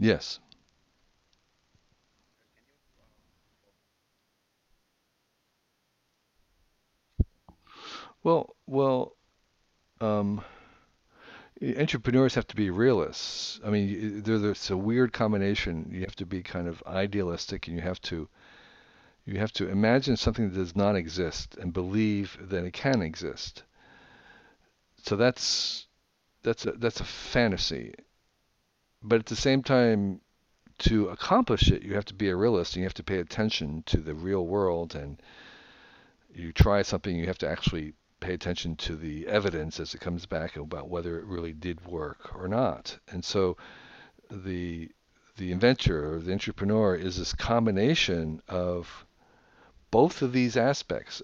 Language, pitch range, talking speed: Hungarian, 85-110 Hz, 135 wpm